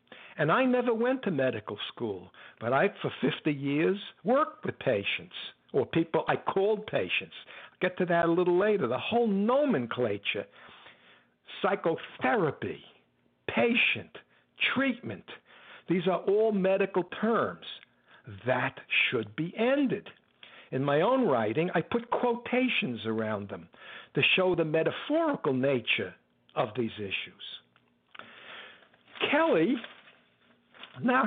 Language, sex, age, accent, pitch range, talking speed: English, male, 60-79, American, 140-215 Hz, 115 wpm